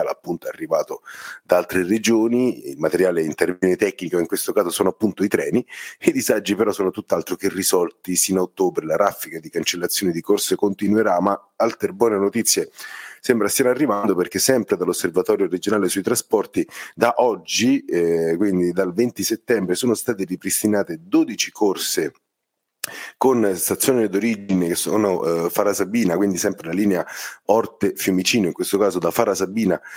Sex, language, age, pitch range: male, Italian, 30-49, 95-125 Hz